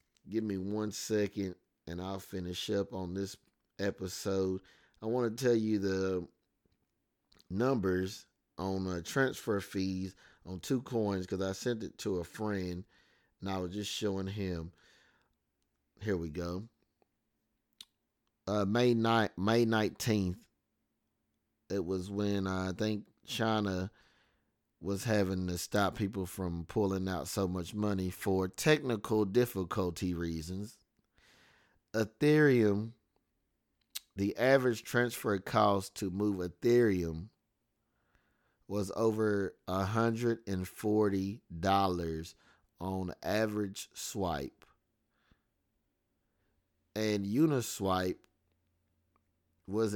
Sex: male